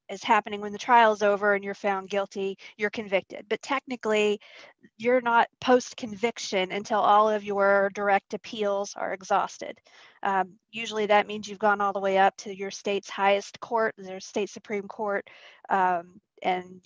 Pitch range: 195-235 Hz